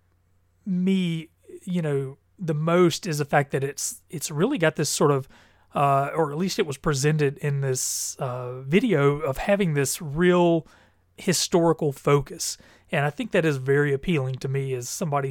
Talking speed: 175 wpm